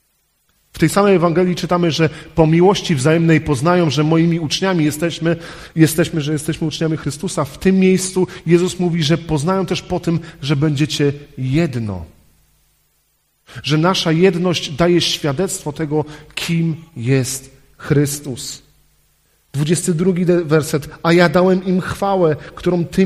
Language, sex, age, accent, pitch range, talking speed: Polish, male, 40-59, native, 135-170 Hz, 130 wpm